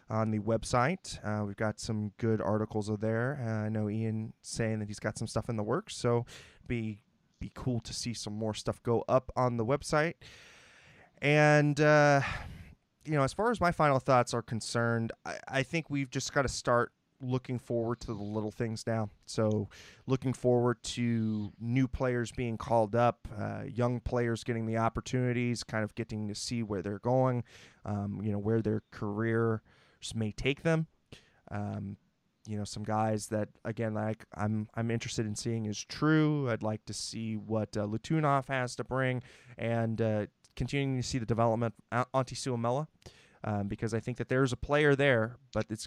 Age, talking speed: 20-39, 185 wpm